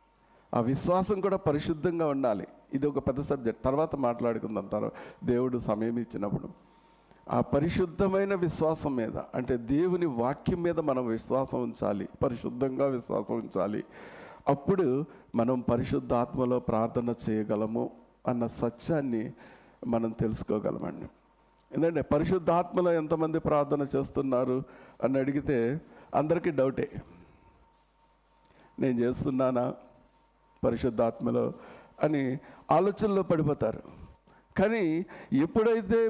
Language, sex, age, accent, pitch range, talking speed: Telugu, male, 50-69, native, 125-170 Hz, 90 wpm